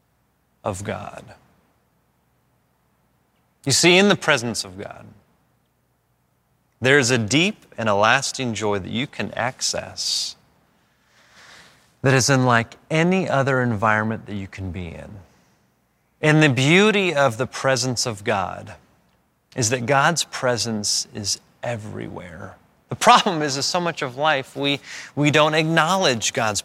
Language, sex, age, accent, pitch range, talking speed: English, male, 30-49, American, 120-175 Hz, 135 wpm